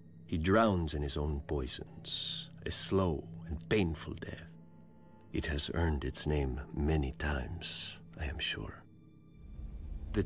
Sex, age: male, 40-59